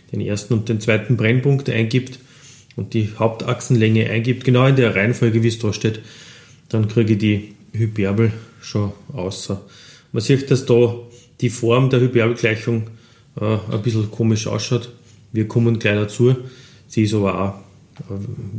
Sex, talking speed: male, 155 wpm